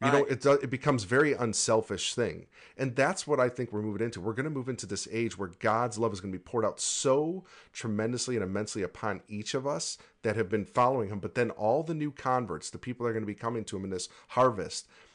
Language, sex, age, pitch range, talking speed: English, male, 40-59, 100-125 Hz, 255 wpm